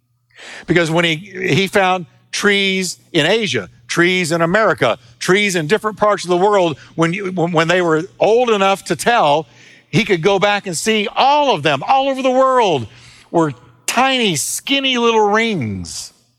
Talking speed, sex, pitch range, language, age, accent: 165 wpm, male, 140-210 Hz, English, 50-69, American